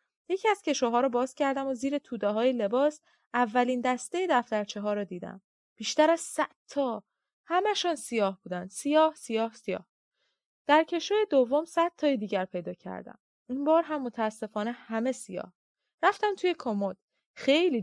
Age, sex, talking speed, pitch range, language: 20-39, female, 150 wpm, 215-300 Hz, Persian